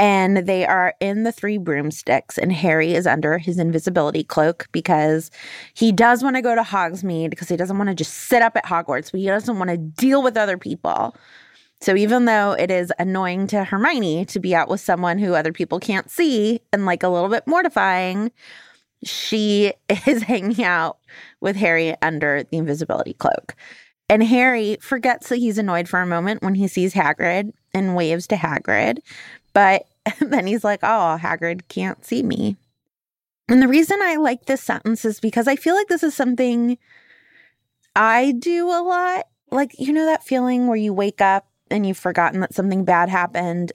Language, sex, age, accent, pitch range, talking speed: English, female, 20-39, American, 175-240 Hz, 190 wpm